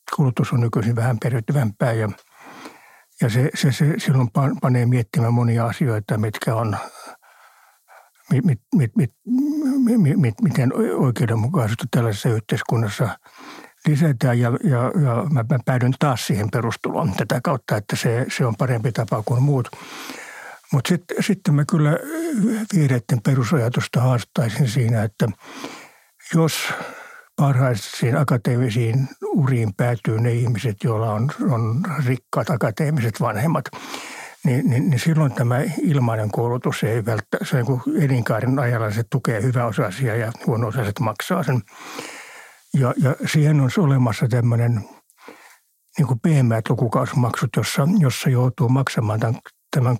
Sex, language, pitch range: male, Finnish, 120-150 Hz